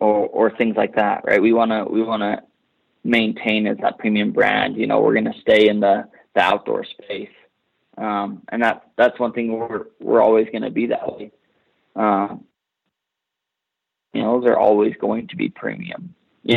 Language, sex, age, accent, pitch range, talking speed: English, male, 20-39, American, 105-115 Hz, 180 wpm